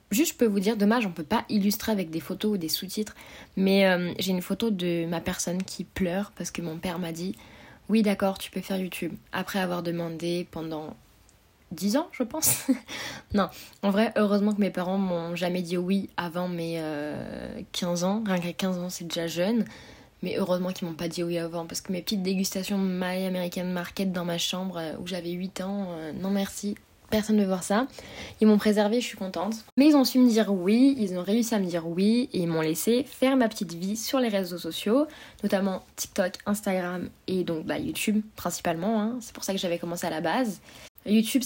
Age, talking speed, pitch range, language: 20-39, 225 wpm, 180-215 Hz, French